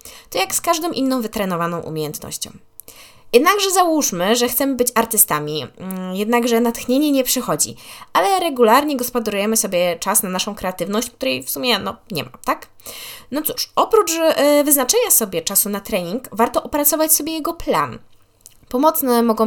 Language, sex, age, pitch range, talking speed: Polish, female, 20-39, 190-255 Hz, 140 wpm